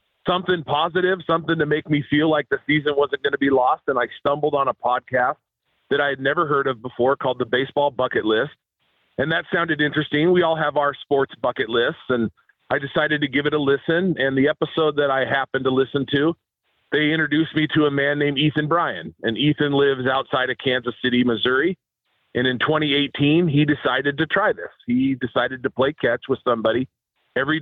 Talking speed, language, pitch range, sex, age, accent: 205 wpm, English, 130-160 Hz, male, 40-59, American